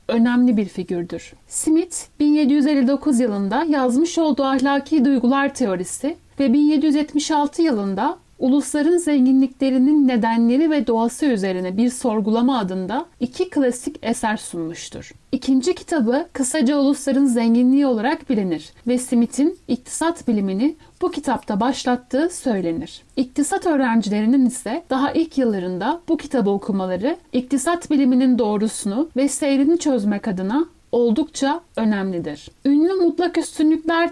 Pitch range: 230-295 Hz